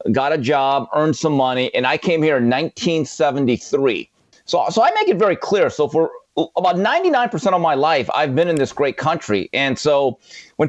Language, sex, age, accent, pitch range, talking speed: English, male, 40-59, American, 130-170 Hz, 195 wpm